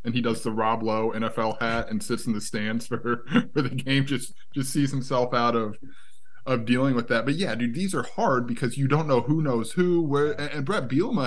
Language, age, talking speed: English, 20-39, 235 wpm